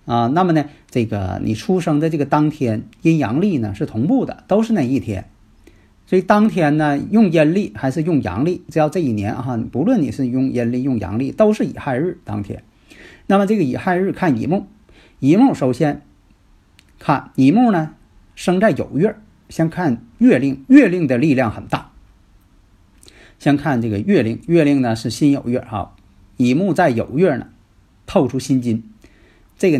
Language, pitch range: Chinese, 105-175 Hz